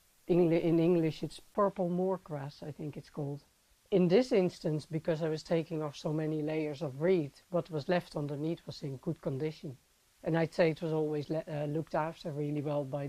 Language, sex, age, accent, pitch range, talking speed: English, female, 60-79, Dutch, 155-190 Hz, 195 wpm